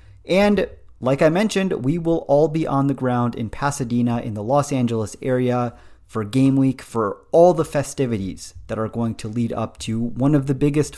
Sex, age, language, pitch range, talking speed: male, 30-49, English, 100-135 Hz, 195 wpm